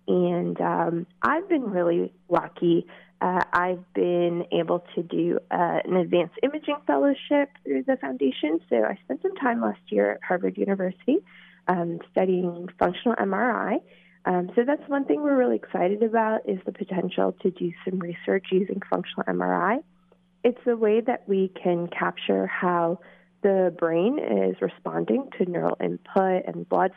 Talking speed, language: 155 wpm, English